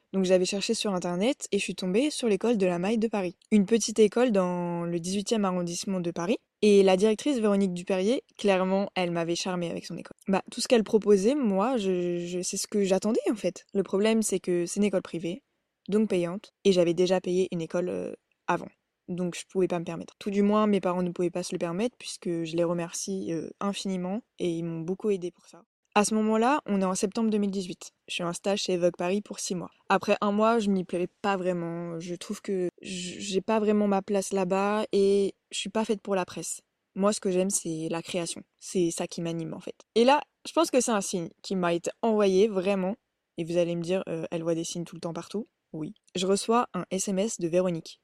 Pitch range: 175-210 Hz